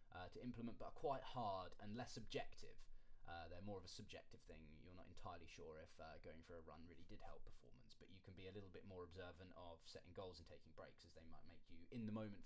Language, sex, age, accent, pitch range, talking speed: English, male, 20-39, British, 100-125 Hz, 255 wpm